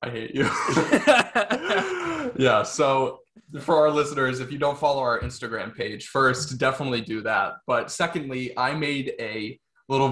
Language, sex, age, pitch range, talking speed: English, male, 20-39, 125-170 Hz, 150 wpm